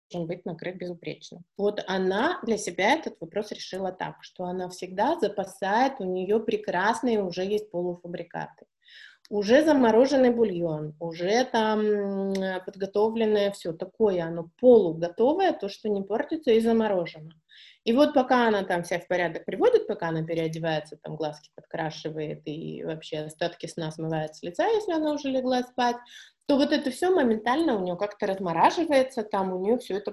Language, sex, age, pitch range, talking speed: Russian, female, 20-39, 170-225 Hz, 155 wpm